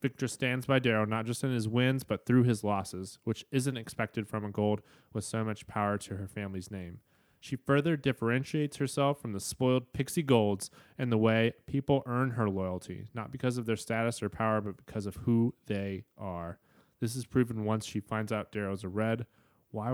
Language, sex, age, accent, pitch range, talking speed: English, male, 20-39, American, 100-120 Hz, 200 wpm